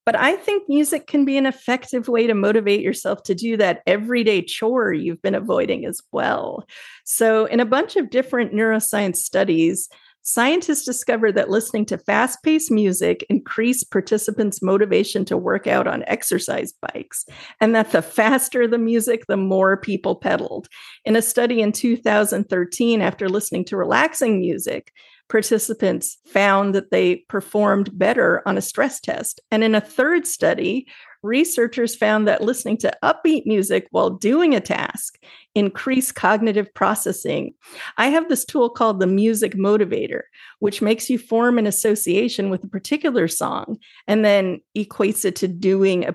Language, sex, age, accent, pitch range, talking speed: English, female, 40-59, American, 200-250 Hz, 155 wpm